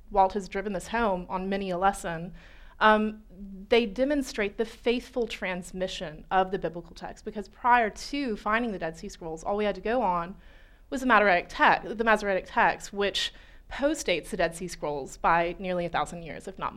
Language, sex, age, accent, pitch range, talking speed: English, female, 20-39, American, 180-215 Hz, 185 wpm